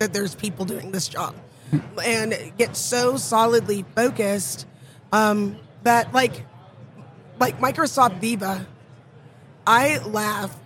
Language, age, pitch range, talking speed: English, 20-39, 190-240 Hz, 105 wpm